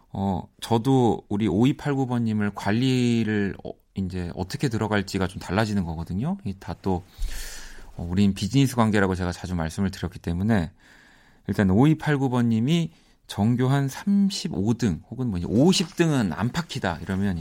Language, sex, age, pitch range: Korean, male, 30-49, 90-130 Hz